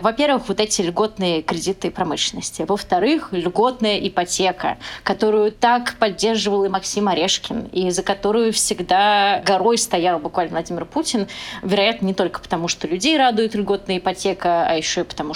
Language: Russian